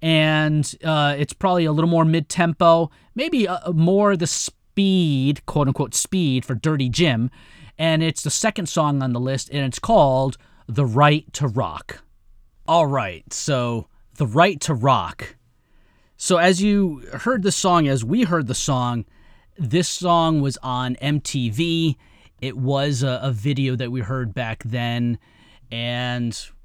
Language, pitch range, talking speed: English, 125-165 Hz, 150 wpm